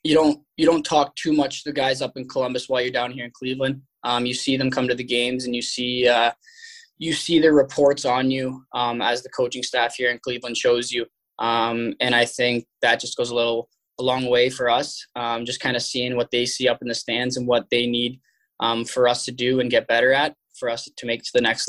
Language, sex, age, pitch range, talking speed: English, male, 10-29, 120-135 Hz, 260 wpm